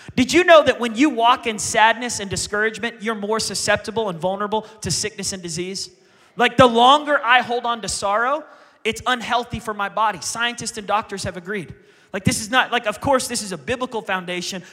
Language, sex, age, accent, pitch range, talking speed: English, male, 30-49, American, 195-235 Hz, 205 wpm